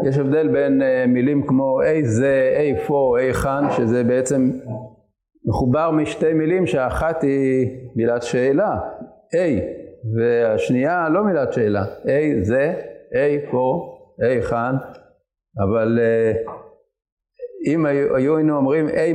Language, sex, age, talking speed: Hebrew, male, 50-69, 120 wpm